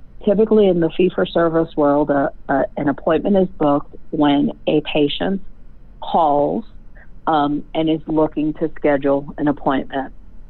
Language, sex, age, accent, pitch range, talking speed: English, female, 50-69, American, 145-180 Hz, 130 wpm